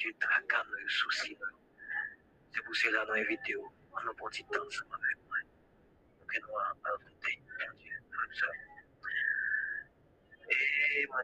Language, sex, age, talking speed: English, male, 50-69, 65 wpm